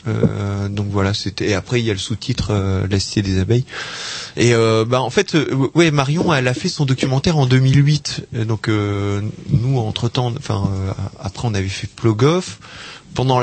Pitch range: 110-140 Hz